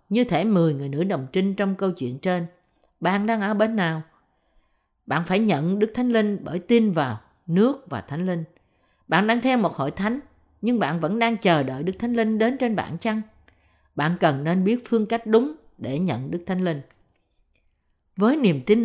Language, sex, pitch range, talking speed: Vietnamese, female, 155-230 Hz, 200 wpm